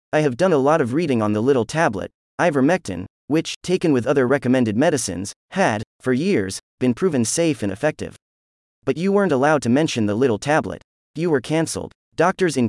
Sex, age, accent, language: male, 30-49, American, English